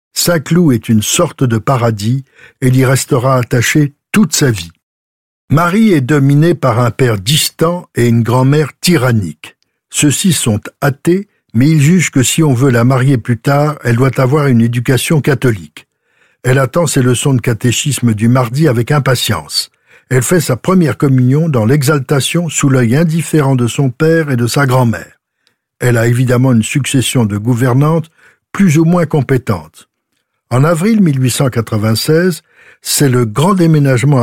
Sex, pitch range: male, 120-155 Hz